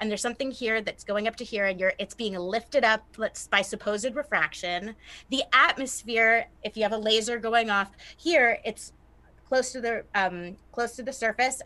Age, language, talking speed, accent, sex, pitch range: 30-49, English, 195 wpm, American, female, 205-255 Hz